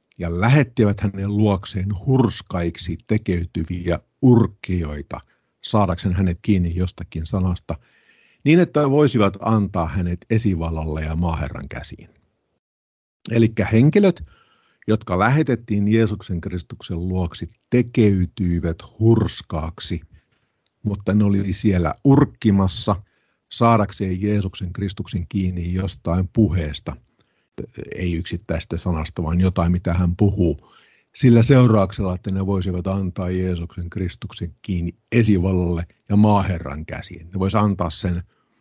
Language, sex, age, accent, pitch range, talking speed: Finnish, male, 50-69, native, 85-105 Hz, 105 wpm